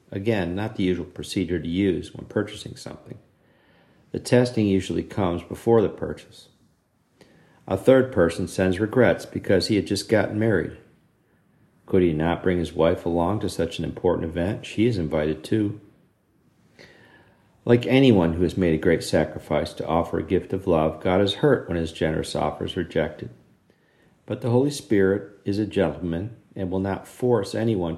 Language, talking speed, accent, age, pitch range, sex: English, 170 wpm, American, 50-69, 85-110 Hz, male